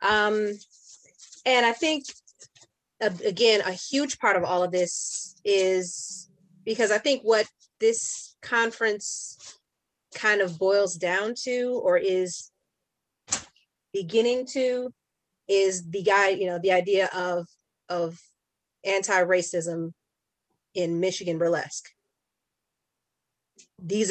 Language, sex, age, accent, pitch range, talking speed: English, female, 30-49, American, 180-220 Hz, 105 wpm